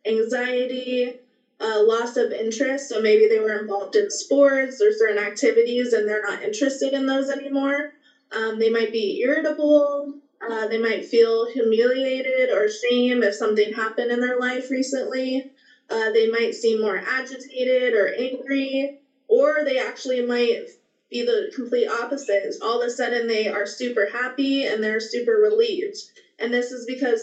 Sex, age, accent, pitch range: female, 20-39, American, 230-295 Hz